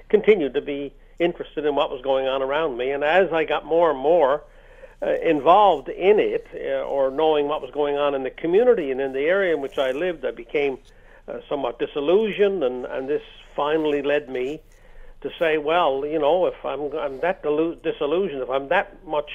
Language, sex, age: English, male, 60-79